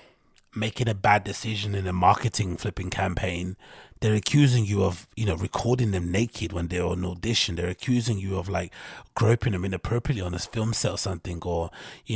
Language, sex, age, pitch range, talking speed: English, male, 30-49, 95-120 Hz, 190 wpm